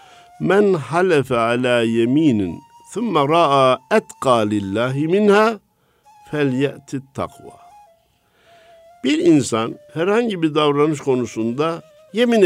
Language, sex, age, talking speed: Turkish, male, 50-69, 65 wpm